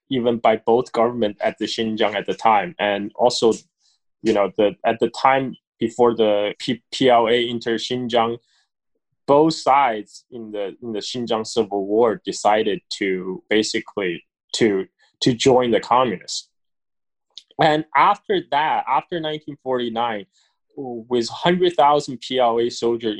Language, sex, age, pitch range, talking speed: English, male, 20-39, 115-140 Hz, 125 wpm